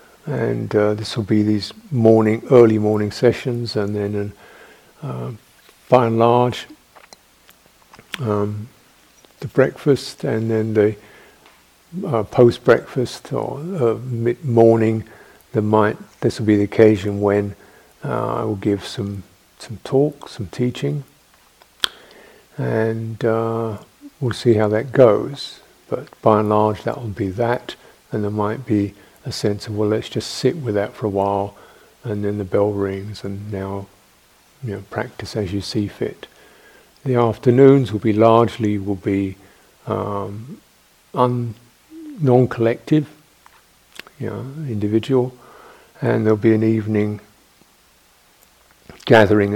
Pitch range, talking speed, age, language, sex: 105-120 Hz, 130 wpm, 50-69, English, male